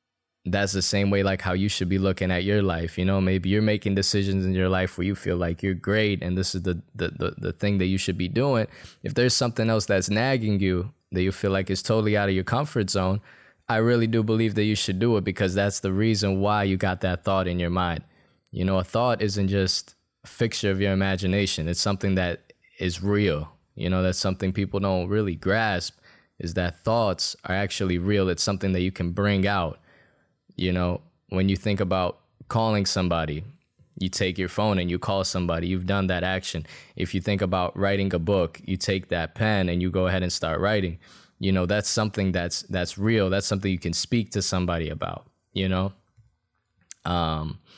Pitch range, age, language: 90-105 Hz, 20-39, English